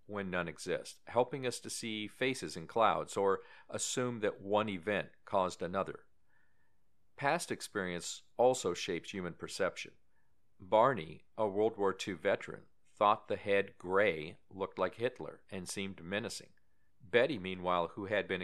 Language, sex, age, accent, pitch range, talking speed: English, male, 50-69, American, 90-120 Hz, 145 wpm